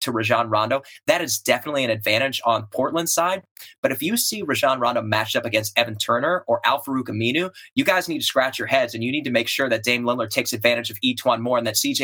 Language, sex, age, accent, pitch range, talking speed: English, male, 30-49, American, 120-175 Hz, 255 wpm